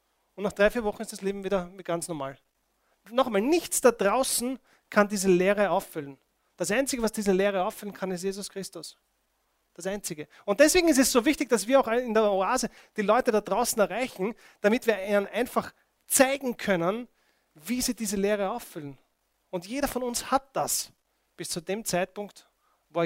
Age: 30-49